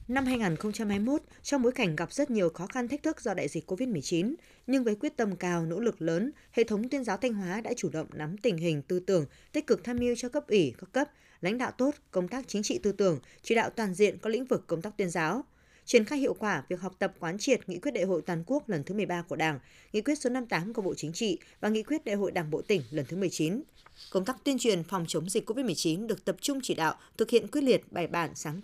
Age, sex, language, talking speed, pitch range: 20-39, female, Vietnamese, 265 wpm, 175-245 Hz